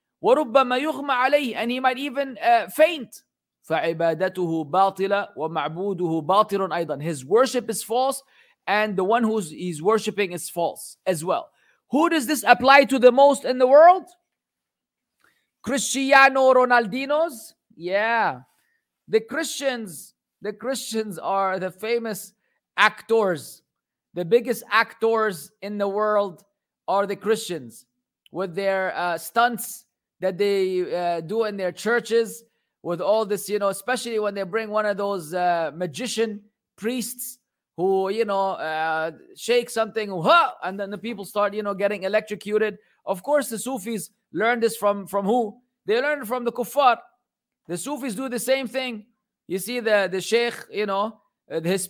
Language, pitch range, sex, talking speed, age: English, 190-240 Hz, male, 140 wpm, 30-49